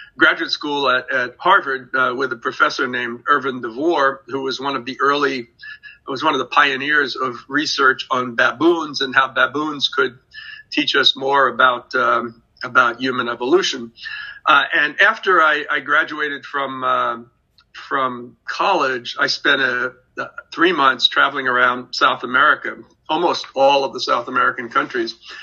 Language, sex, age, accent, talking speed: English, male, 50-69, American, 155 wpm